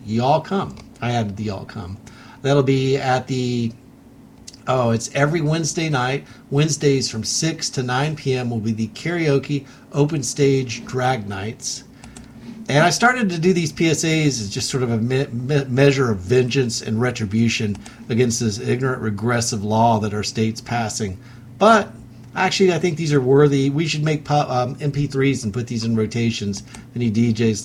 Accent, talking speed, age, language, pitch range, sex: American, 160 wpm, 50-69, English, 120-150 Hz, male